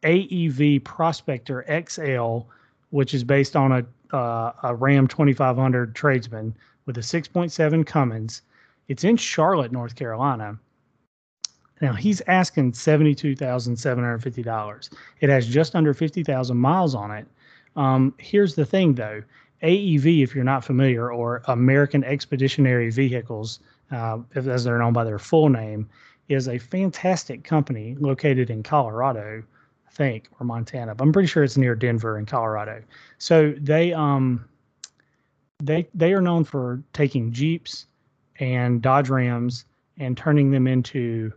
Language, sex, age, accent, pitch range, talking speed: English, male, 30-49, American, 120-145 Hz, 135 wpm